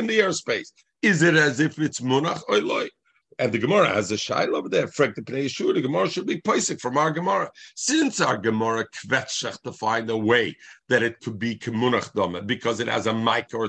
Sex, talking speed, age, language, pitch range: male, 210 wpm, 50-69, English, 115-165 Hz